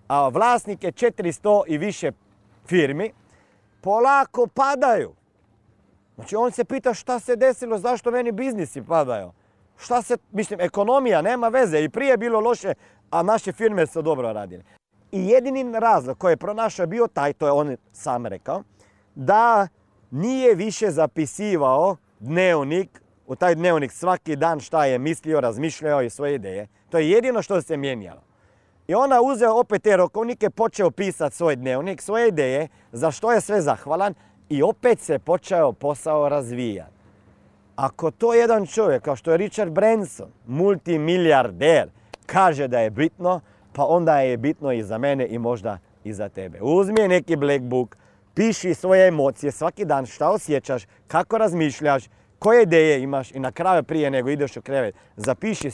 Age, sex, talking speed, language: 40-59, male, 155 wpm, Croatian